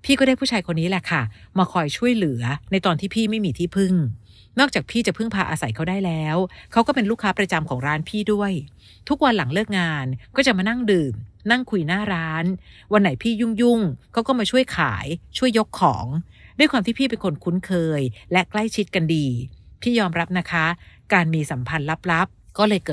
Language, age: Thai, 60-79